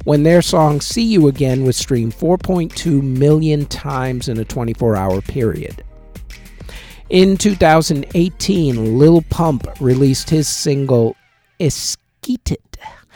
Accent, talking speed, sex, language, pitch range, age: American, 105 wpm, male, English, 115-165 Hz, 50-69